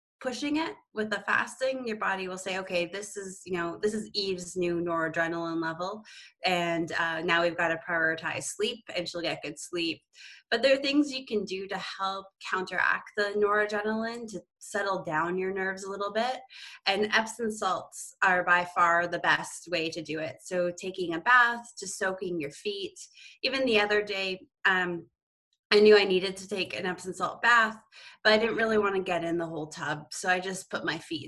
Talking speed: 200 wpm